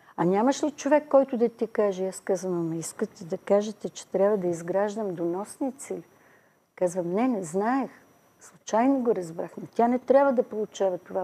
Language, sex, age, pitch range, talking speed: Bulgarian, female, 50-69, 180-225 Hz, 175 wpm